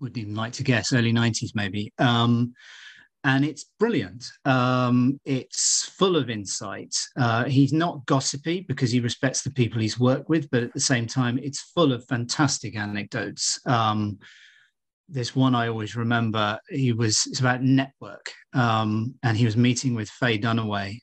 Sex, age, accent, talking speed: male, 40-59, British, 165 wpm